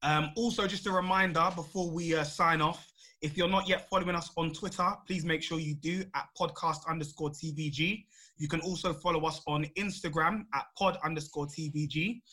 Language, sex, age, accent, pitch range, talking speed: English, male, 20-39, British, 155-180 Hz, 185 wpm